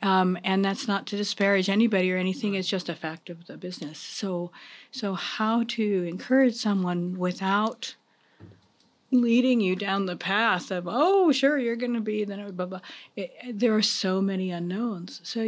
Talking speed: 180 wpm